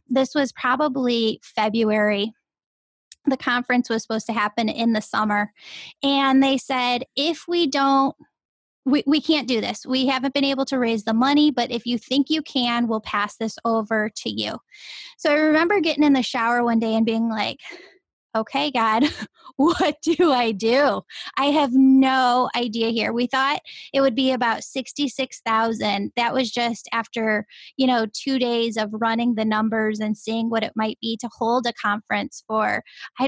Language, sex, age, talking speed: English, female, 10-29, 175 wpm